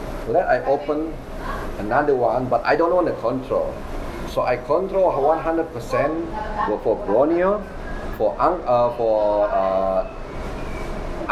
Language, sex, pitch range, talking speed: English, male, 120-175 Hz, 110 wpm